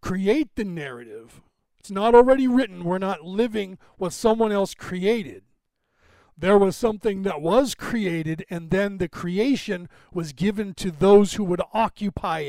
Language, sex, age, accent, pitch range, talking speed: English, male, 40-59, American, 170-225 Hz, 150 wpm